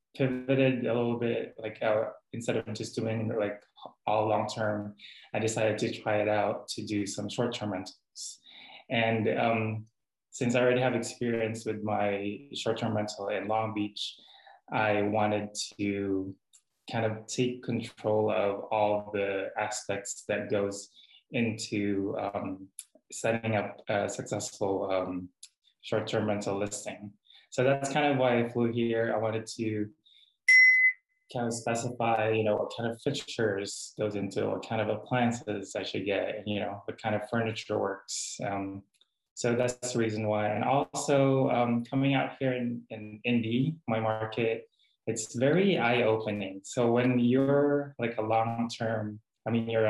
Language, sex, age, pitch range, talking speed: English, male, 20-39, 105-120 Hz, 150 wpm